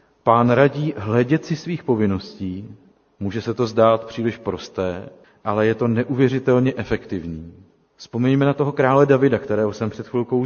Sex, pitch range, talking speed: male, 110-135 Hz, 150 wpm